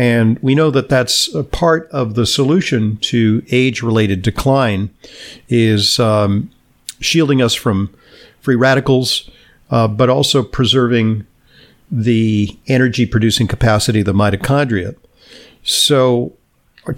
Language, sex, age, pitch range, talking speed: English, male, 50-69, 110-130 Hz, 115 wpm